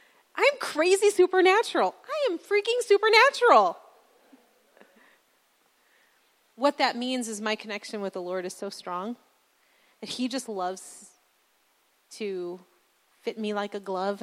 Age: 30-49